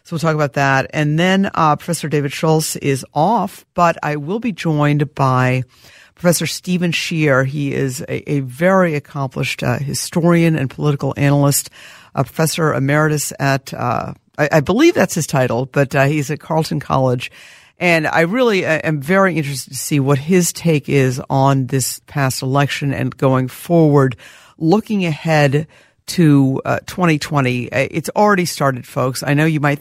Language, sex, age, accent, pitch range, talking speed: English, female, 50-69, American, 135-165 Hz, 170 wpm